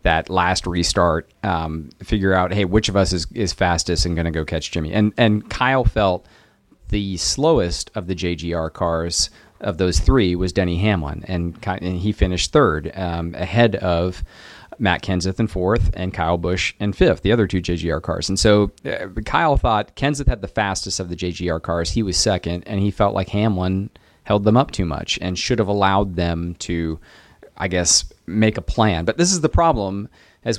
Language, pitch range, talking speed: English, 90-105 Hz, 195 wpm